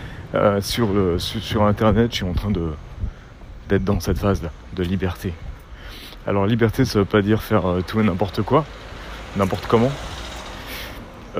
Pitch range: 85-105 Hz